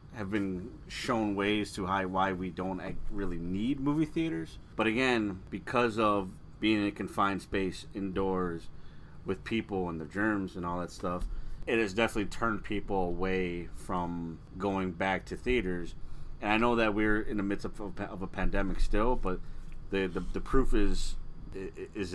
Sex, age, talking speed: male, 30-49, 175 wpm